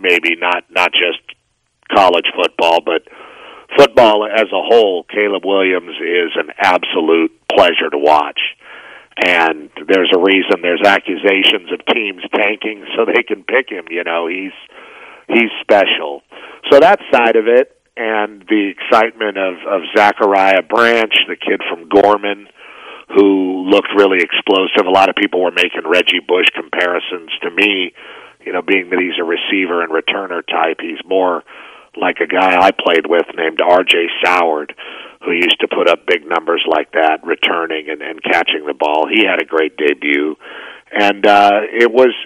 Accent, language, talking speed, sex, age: American, English, 160 wpm, male, 50-69